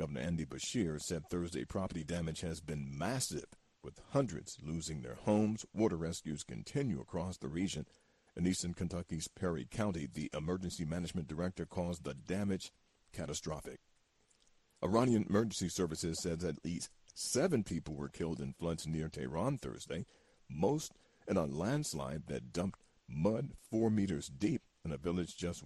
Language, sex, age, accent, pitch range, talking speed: English, male, 50-69, American, 80-95 Hz, 145 wpm